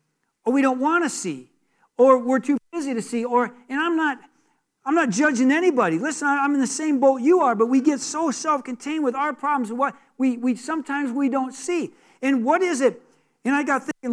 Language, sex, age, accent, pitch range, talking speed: English, male, 50-69, American, 215-290 Hz, 220 wpm